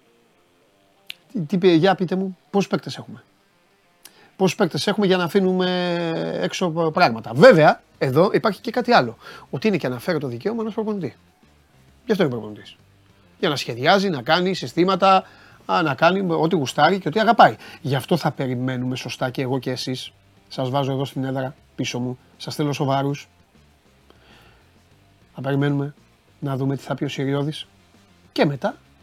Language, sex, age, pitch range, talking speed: Greek, male, 30-49, 115-190 Hz, 160 wpm